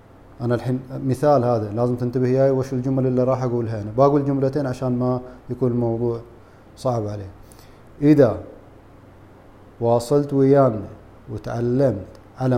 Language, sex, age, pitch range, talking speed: Arabic, male, 30-49, 115-135 Hz, 125 wpm